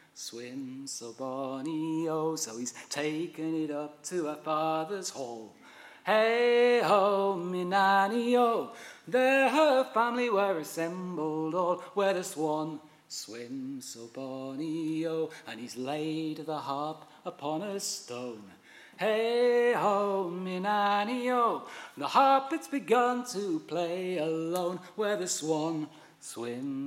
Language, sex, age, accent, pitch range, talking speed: English, male, 30-49, British, 155-210 Hz, 120 wpm